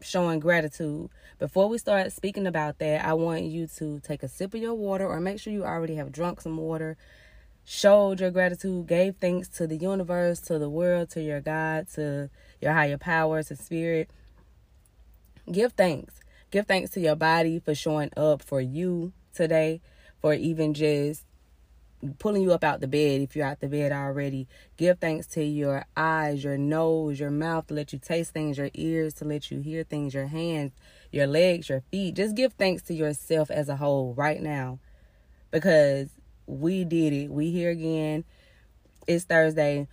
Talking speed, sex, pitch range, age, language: 180 wpm, female, 145-170 Hz, 20-39, English